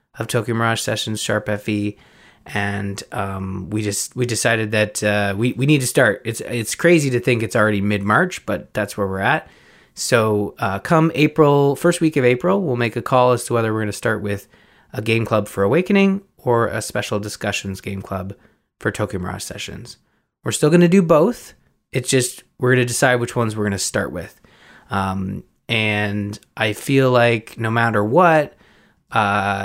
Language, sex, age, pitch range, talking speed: English, male, 20-39, 100-125 Hz, 190 wpm